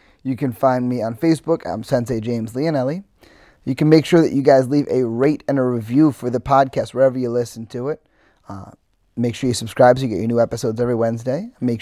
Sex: male